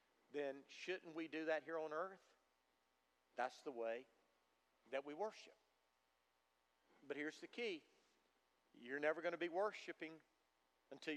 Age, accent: 50-69, American